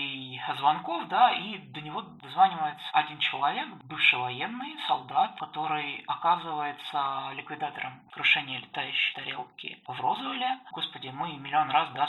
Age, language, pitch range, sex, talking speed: 20-39, Russian, 125-150 Hz, male, 120 wpm